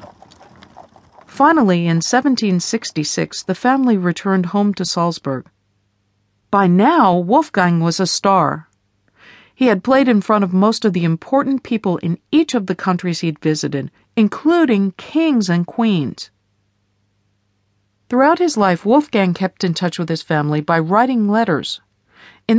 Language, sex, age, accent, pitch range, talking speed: English, female, 50-69, American, 170-230 Hz, 135 wpm